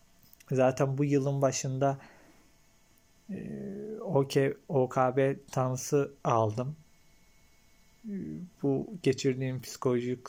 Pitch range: 115-135 Hz